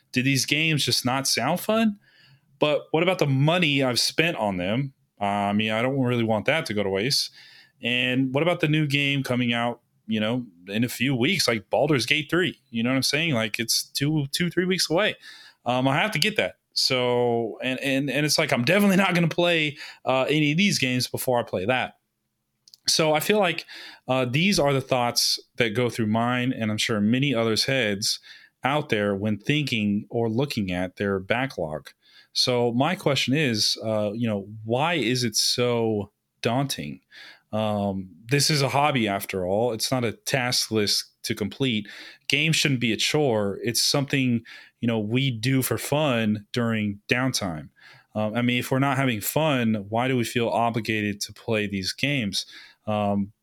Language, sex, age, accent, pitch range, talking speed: English, male, 20-39, American, 110-140 Hz, 195 wpm